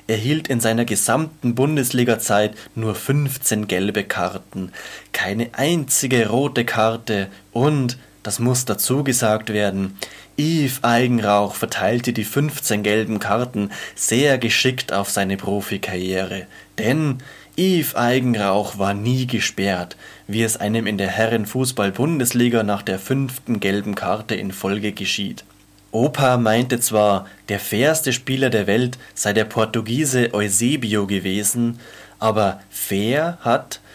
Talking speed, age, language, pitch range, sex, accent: 120 wpm, 20-39, German, 105-130 Hz, male, German